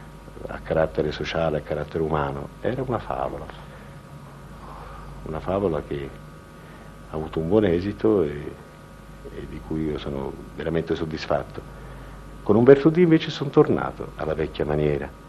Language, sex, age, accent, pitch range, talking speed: Italian, male, 50-69, native, 75-95 Hz, 135 wpm